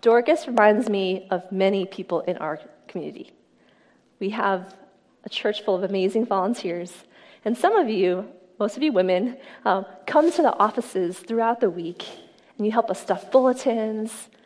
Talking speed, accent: 160 wpm, American